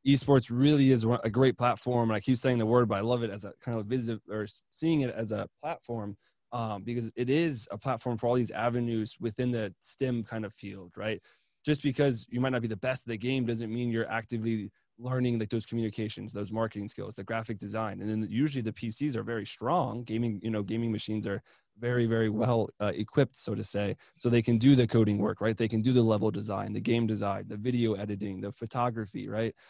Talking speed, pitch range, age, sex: 230 wpm, 110-130 Hz, 20-39, male